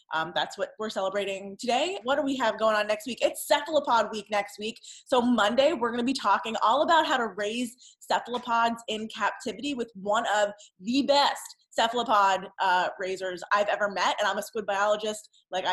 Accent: American